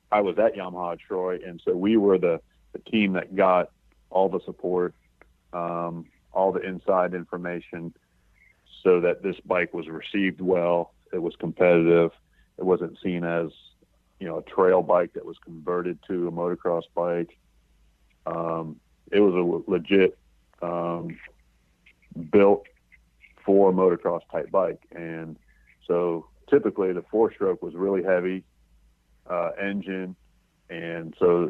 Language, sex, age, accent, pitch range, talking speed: English, male, 40-59, American, 85-95 Hz, 140 wpm